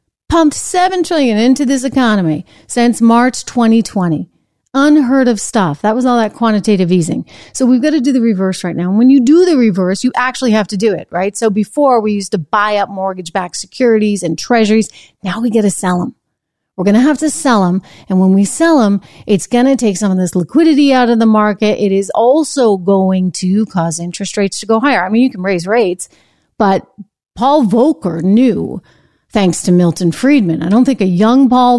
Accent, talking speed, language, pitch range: American, 210 wpm, English, 185-245 Hz